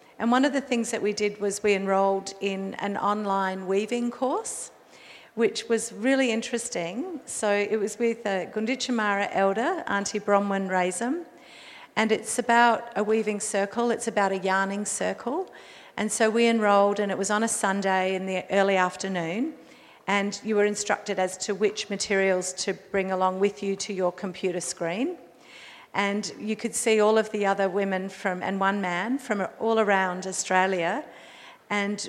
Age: 50-69